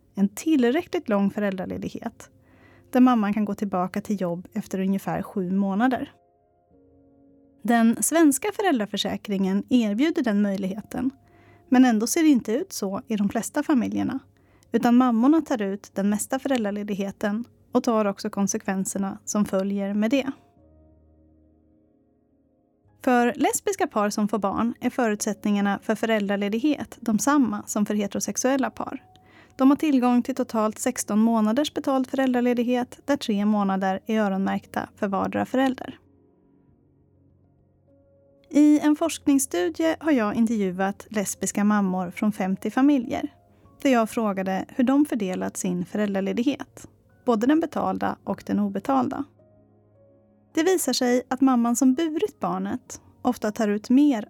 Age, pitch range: 30-49, 195-265 Hz